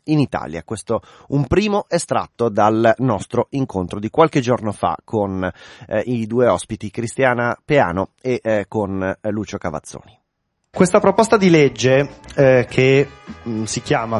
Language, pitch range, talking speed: Italian, 115-140 Hz, 150 wpm